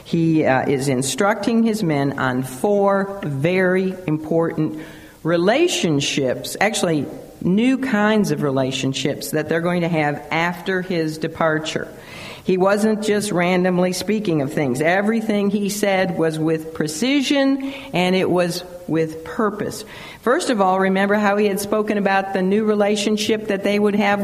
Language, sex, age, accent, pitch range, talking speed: English, female, 50-69, American, 170-230 Hz, 145 wpm